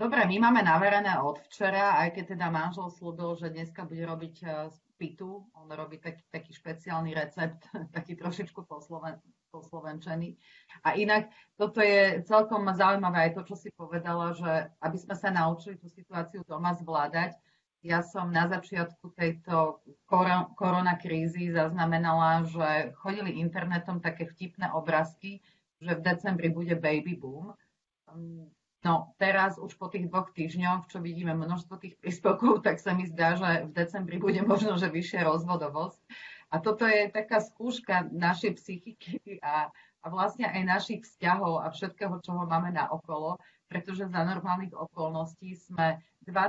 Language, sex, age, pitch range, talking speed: Slovak, female, 30-49, 165-195 Hz, 150 wpm